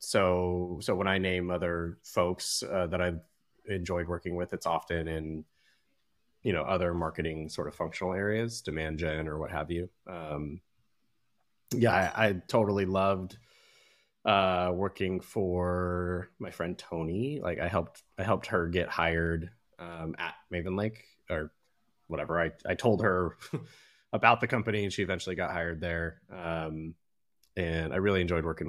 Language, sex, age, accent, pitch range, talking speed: English, male, 20-39, American, 85-95 Hz, 155 wpm